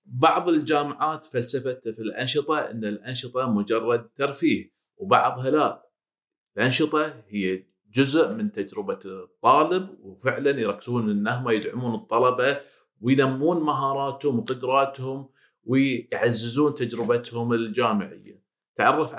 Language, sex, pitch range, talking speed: Arabic, male, 115-145 Hz, 90 wpm